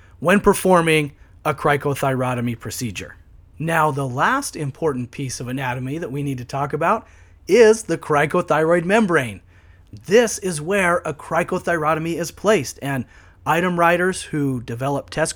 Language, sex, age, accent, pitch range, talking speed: English, male, 30-49, American, 125-175 Hz, 135 wpm